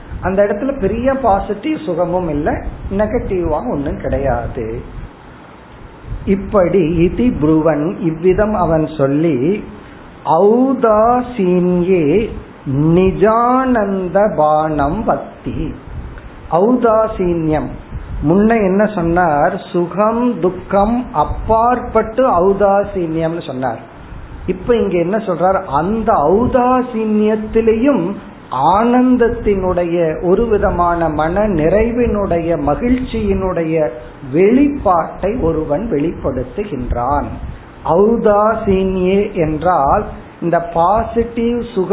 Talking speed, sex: 40 wpm, male